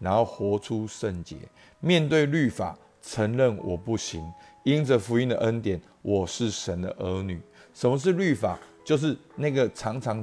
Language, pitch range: Chinese, 95-130 Hz